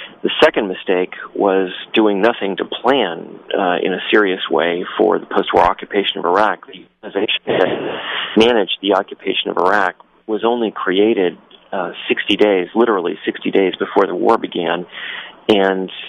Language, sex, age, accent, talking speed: English, male, 40-59, American, 155 wpm